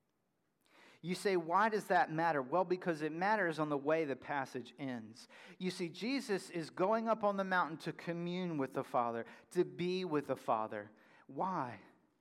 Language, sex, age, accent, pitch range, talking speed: English, male, 40-59, American, 150-195 Hz, 175 wpm